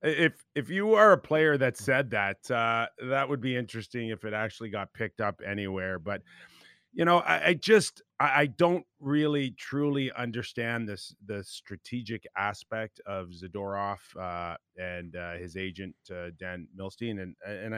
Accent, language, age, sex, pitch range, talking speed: American, English, 30-49, male, 95-115 Hz, 165 wpm